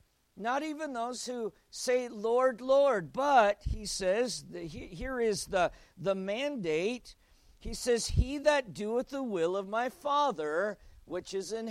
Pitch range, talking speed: 170-230 Hz, 145 wpm